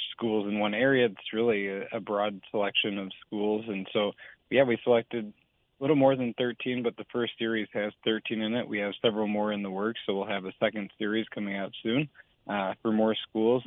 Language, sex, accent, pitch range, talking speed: English, male, American, 100-115 Hz, 215 wpm